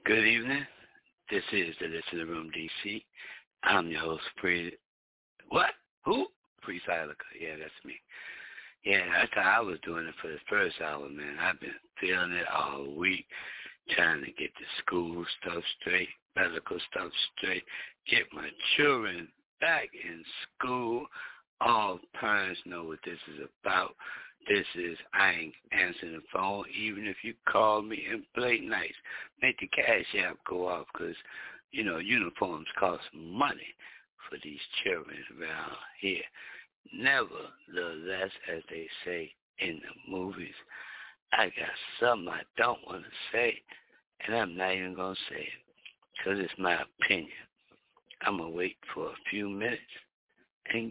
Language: English